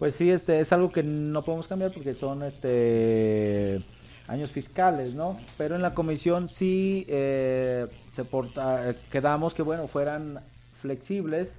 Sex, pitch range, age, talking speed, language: male, 120-155 Hz, 40-59, 145 wpm, Spanish